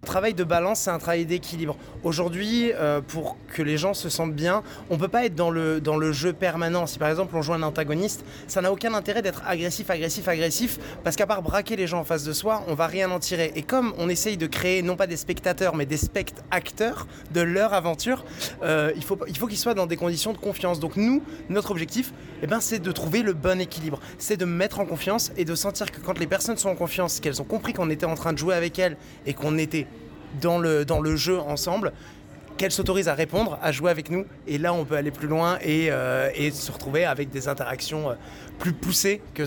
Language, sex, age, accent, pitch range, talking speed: French, male, 20-39, French, 155-185 Hz, 245 wpm